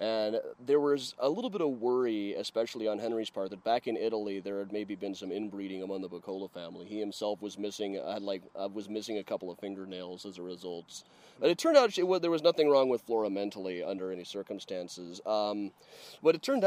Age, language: 30-49, English